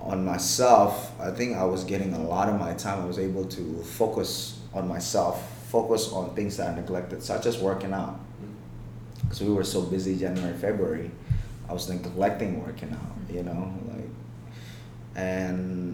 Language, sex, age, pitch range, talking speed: English, male, 20-39, 90-115 Hz, 170 wpm